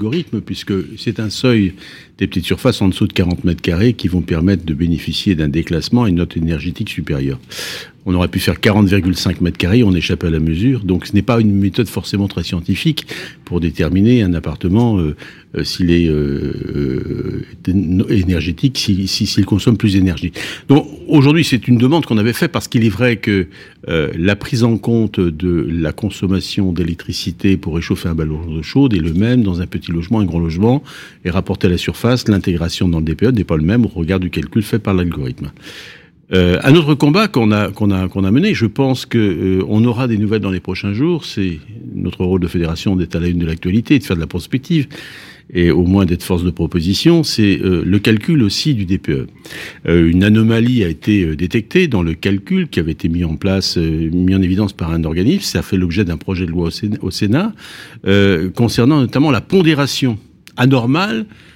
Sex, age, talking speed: male, 60-79, 210 wpm